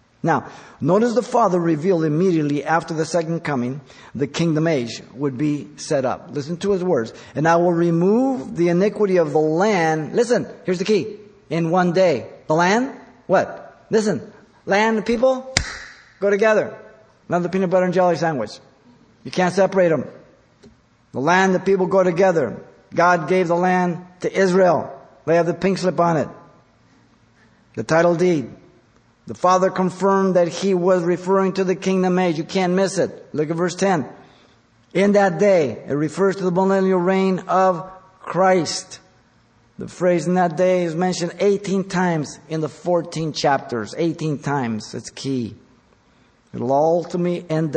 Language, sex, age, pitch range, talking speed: English, male, 50-69, 140-190 Hz, 160 wpm